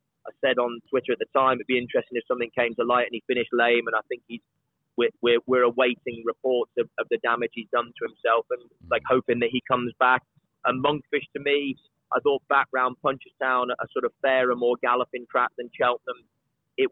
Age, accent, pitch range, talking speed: 20-39, British, 125-140 Hz, 220 wpm